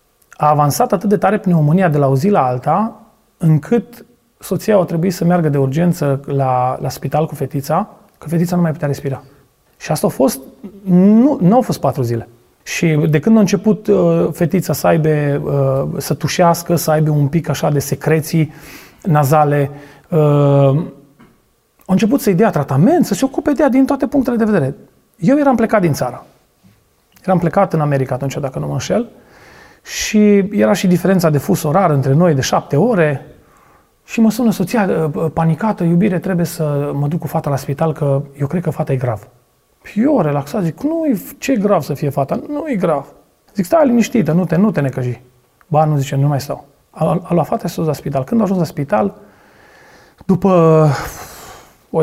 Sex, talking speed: male, 185 wpm